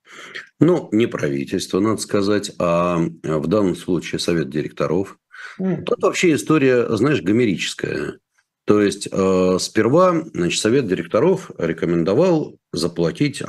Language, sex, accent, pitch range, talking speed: Russian, male, native, 95-150 Hz, 105 wpm